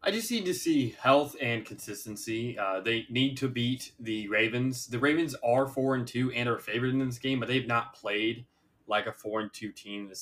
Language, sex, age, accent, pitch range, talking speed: English, male, 20-39, American, 105-125 Hz, 225 wpm